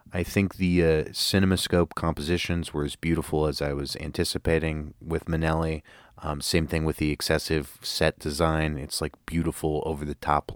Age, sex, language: 30-49, male, English